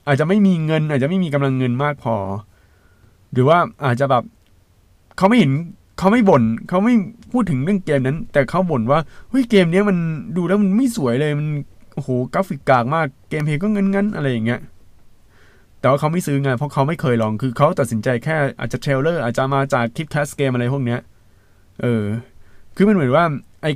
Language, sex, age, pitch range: Thai, male, 20-39, 115-155 Hz